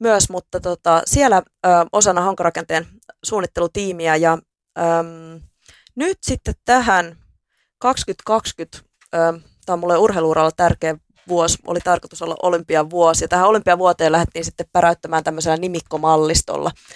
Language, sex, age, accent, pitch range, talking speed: Finnish, female, 20-39, native, 165-180 Hz, 120 wpm